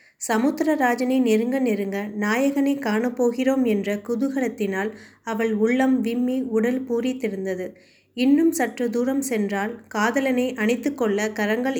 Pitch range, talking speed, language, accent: 215-255 Hz, 100 wpm, Tamil, native